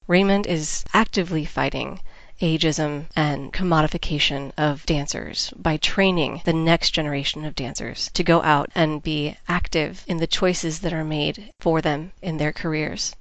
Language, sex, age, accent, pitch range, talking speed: English, female, 30-49, American, 155-185 Hz, 150 wpm